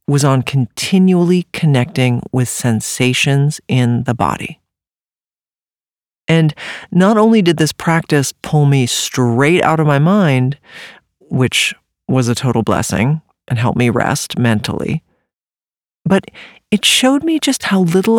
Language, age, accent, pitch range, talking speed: English, 40-59, American, 135-190 Hz, 130 wpm